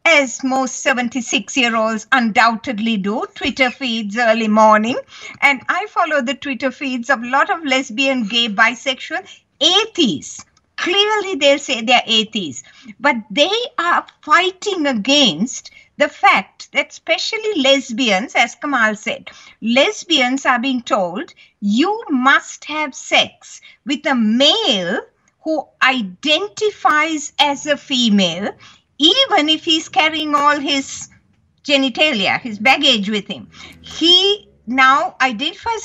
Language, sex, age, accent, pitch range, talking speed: English, female, 50-69, Indian, 245-330 Hz, 120 wpm